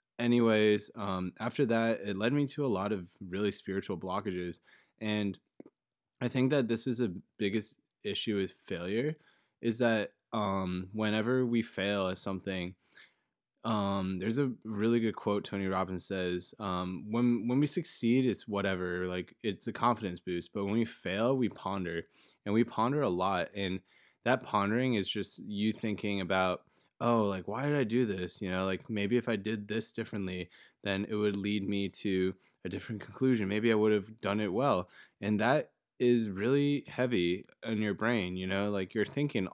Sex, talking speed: male, 180 wpm